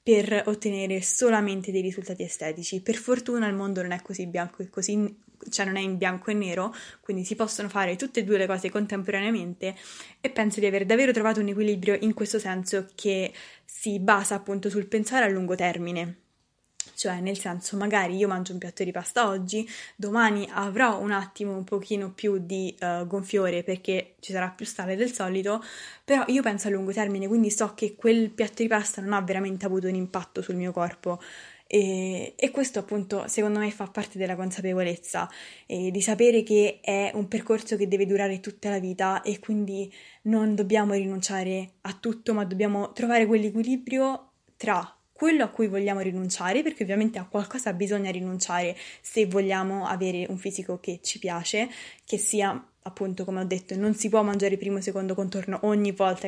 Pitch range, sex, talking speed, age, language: 190-215 Hz, female, 185 wpm, 20-39, Italian